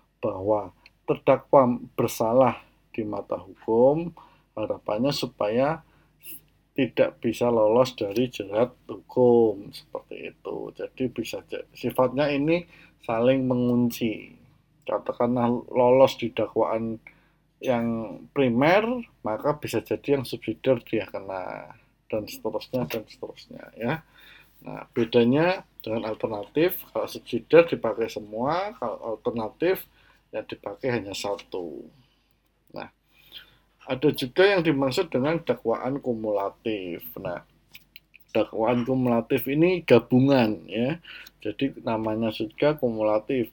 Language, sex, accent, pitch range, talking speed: Indonesian, male, native, 110-150 Hz, 100 wpm